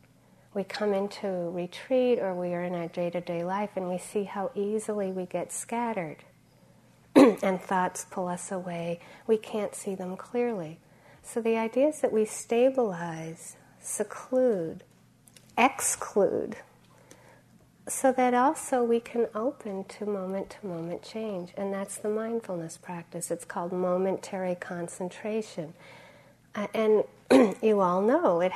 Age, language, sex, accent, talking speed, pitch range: 40-59, English, female, American, 130 wpm, 175-210 Hz